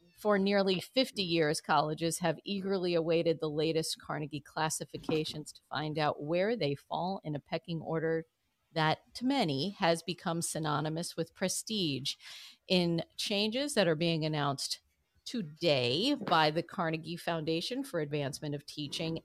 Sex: female